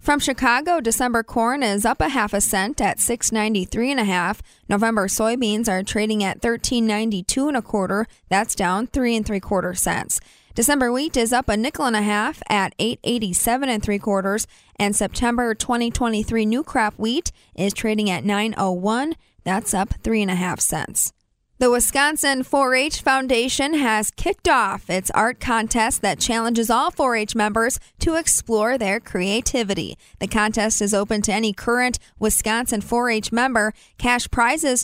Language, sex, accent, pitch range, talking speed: English, female, American, 205-245 Hz, 170 wpm